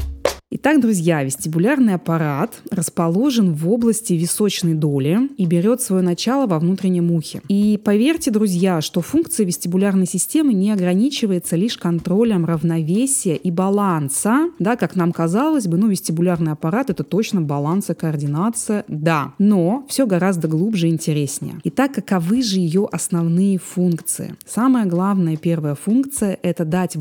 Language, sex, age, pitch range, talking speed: Russian, female, 20-39, 165-215 Hz, 140 wpm